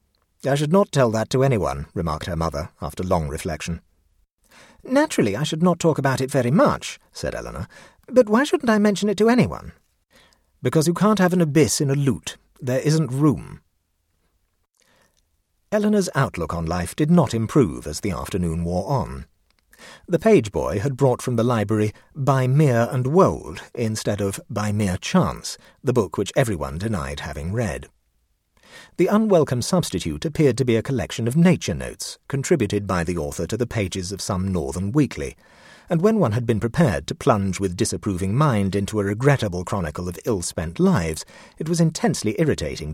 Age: 50-69